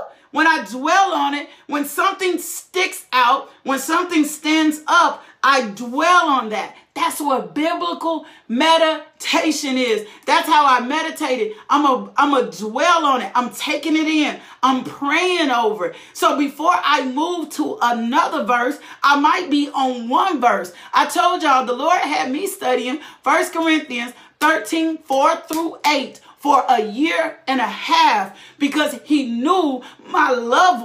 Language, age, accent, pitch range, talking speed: English, 40-59, American, 265-330 Hz, 160 wpm